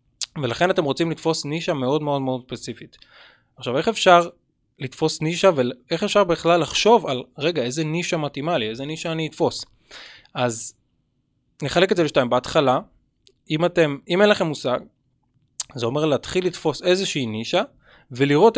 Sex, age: male, 20-39